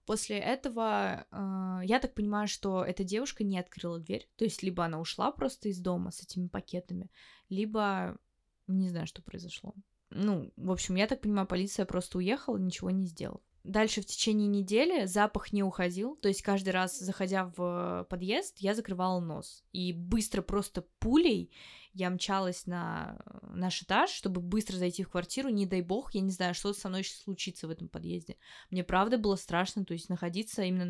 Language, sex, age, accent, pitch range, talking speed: Russian, female, 20-39, native, 180-205 Hz, 180 wpm